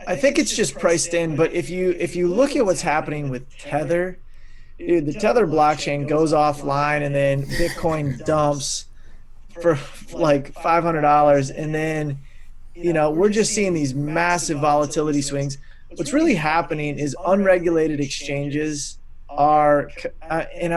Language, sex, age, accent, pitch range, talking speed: English, male, 20-39, American, 145-180 Hz, 140 wpm